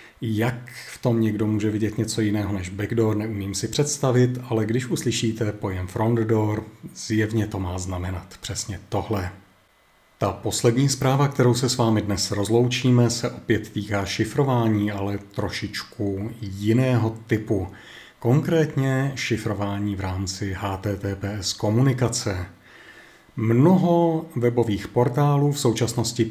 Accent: native